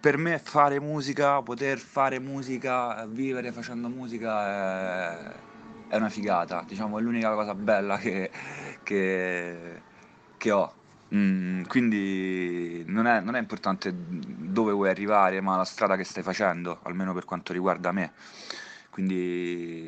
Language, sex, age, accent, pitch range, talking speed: Italian, male, 20-39, native, 85-110 Hz, 135 wpm